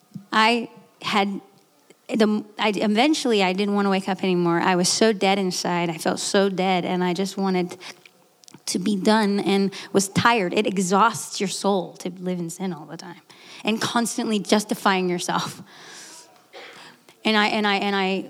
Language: English